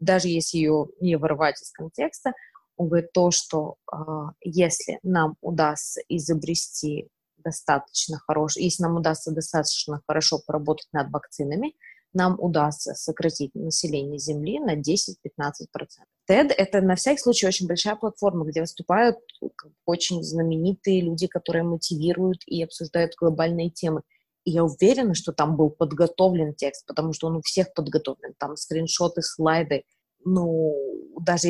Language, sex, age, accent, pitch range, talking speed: Russian, female, 20-39, native, 155-180 Hz, 135 wpm